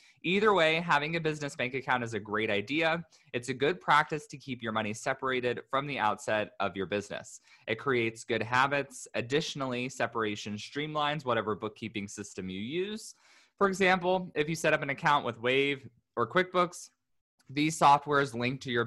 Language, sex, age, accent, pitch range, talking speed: English, male, 20-39, American, 110-150 Hz, 175 wpm